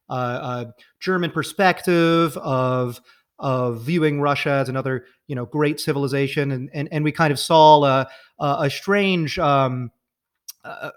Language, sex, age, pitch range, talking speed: English, male, 30-49, 125-160 Hz, 140 wpm